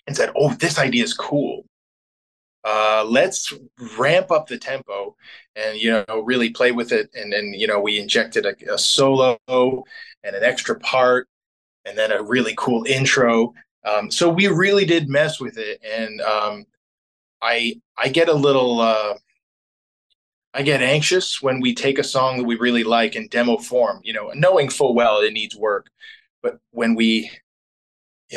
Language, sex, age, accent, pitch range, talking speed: English, male, 20-39, American, 115-150 Hz, 175 wpm